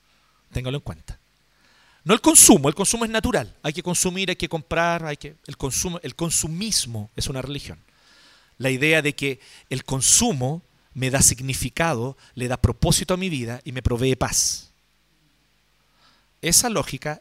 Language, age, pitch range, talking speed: Spanish, 40-59, 140-225 Hz, 160 wpm